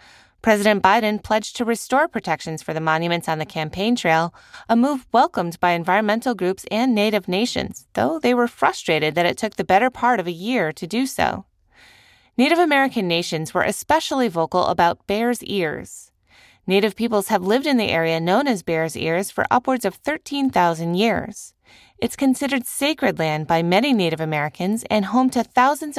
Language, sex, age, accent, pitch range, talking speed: English, female, 20-39, American, 170-245 Hz, 175 wpm